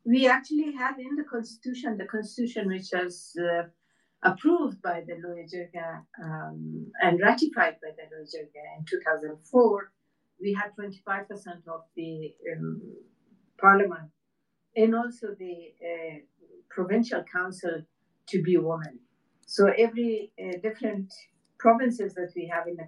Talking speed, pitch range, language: 130 wpm, 165-215 Hz, English